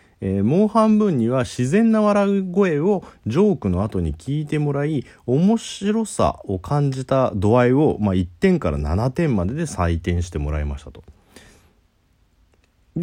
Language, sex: Japanese, male